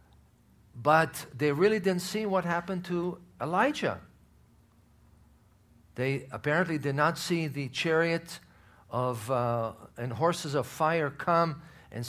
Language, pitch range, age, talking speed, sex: English, 120-165 Hz, 50-69, 120 wpm, male